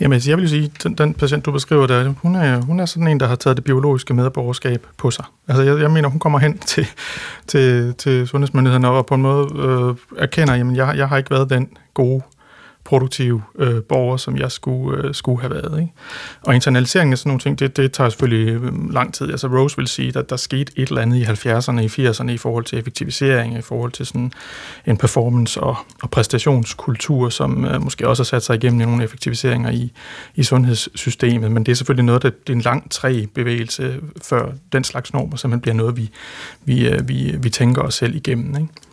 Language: Danish